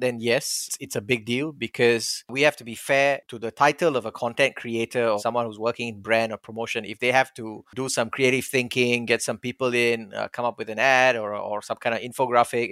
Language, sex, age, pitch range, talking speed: English, male, 30-49, 120-140 Hz, 240 wpm